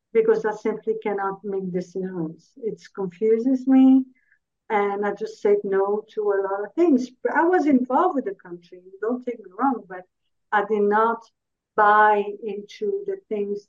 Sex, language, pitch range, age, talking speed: female, English, 205-255 Hz, 50-69, 160 wpm